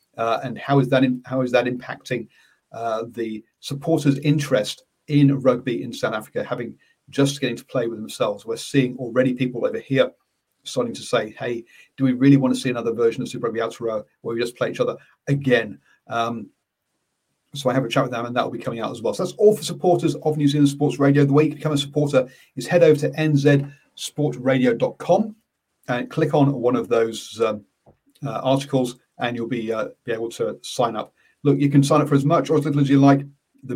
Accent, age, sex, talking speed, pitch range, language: British, 40-59, male, 220 wpm, 125-145 Hz, English